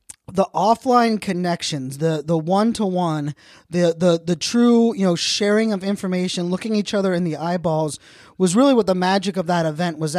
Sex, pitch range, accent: male, 175-215 Hz, American